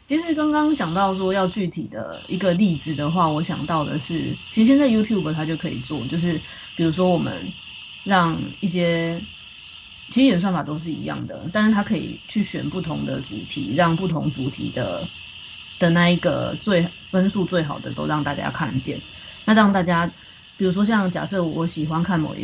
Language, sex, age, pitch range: Chinese, female, 20-39, 155-185 Hz